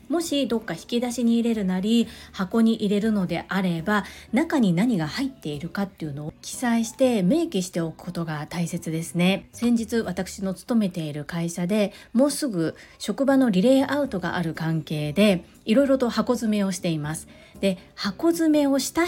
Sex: female